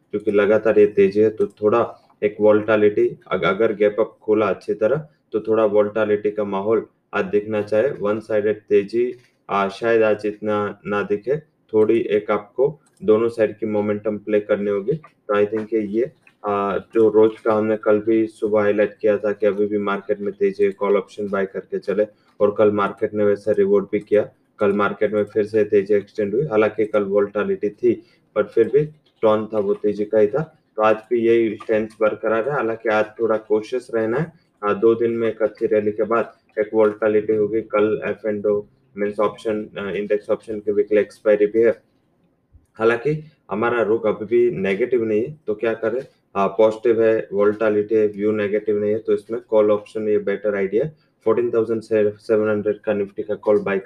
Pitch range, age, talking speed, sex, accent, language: 105-120 Hz, 20-39, 150 wpm, male, Indian, English